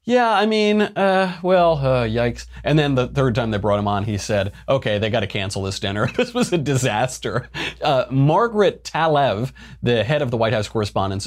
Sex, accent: male, American